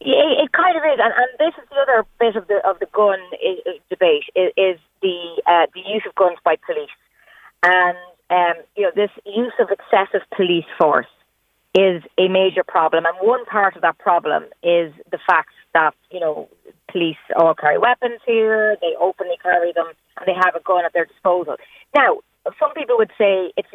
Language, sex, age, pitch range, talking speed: English, female, 30-49, 165-220 Hz, 200 wpm